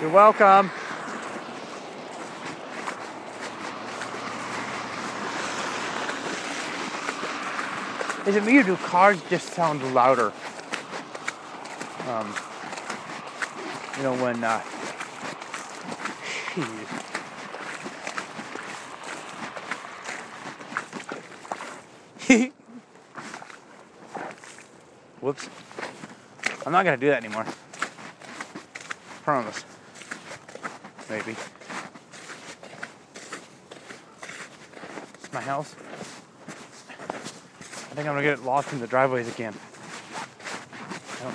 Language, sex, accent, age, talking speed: English, male, American, 30-49, 55 wpm